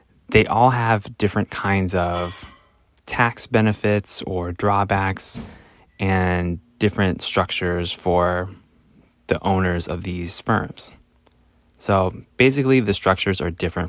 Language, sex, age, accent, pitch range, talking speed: English, male, 20-39, American, 90-110 Hz, 110 wpm